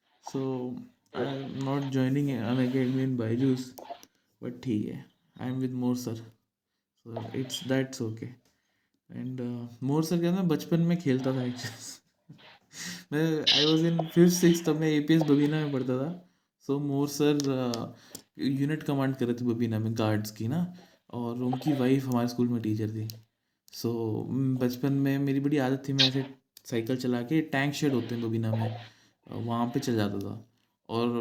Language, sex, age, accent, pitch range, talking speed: Hindi, male, 20-39, native, 115-140 Hz, 165 wpm